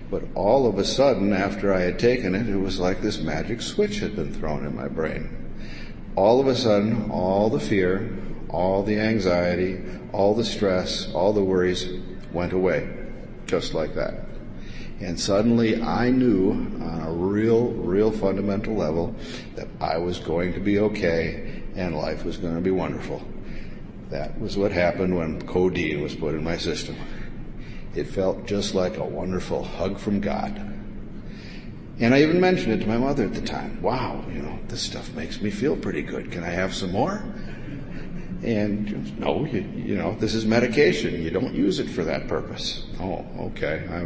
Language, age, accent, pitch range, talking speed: English, 50-69, American, 90-115 Hz, 180 wpm